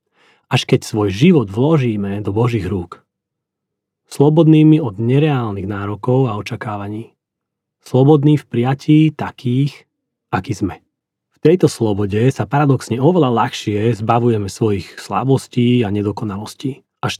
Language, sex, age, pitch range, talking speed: Slovak, male, 30-49, 105-145 Hz, 115 wpm